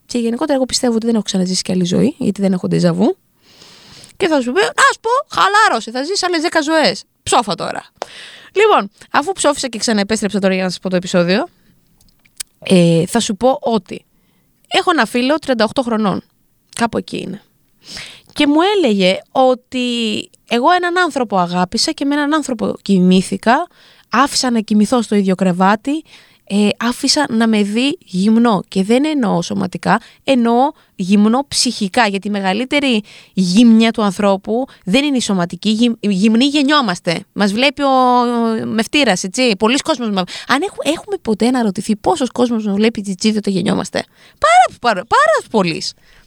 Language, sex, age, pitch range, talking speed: Greek, female, 20-39, 200-275 Hz, 155 wpm